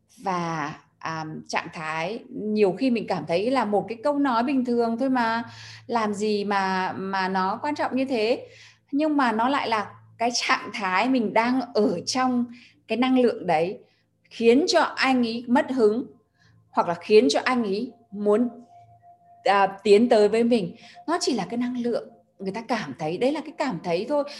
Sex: female